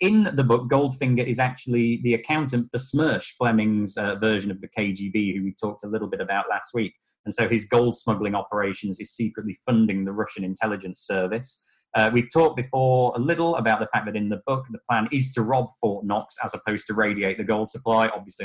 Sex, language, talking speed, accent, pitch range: male, English, 215 wpm, British, 105-130 Hz